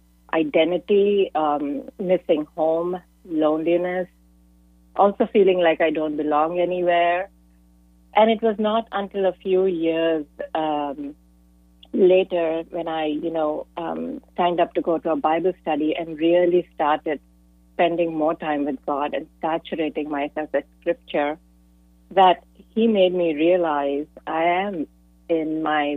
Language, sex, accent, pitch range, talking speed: English, female, Indian, 145-170 Hz, 130 wpm